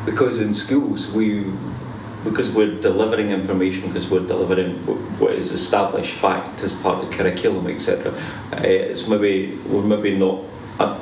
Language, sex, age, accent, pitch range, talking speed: English, male, 40-59, British, 95-110 Hz, 140 wpm